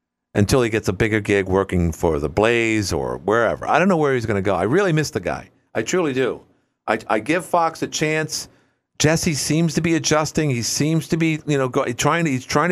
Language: English